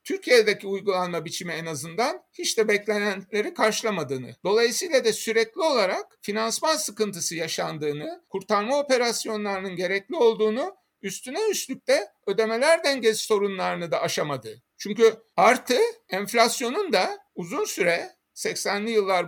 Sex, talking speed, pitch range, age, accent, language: male, 110 wpm, 185-250 Hz, 60-79, native, Turkish